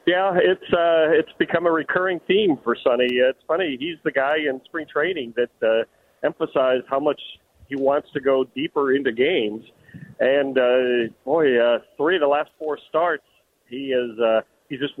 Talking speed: 180 wpm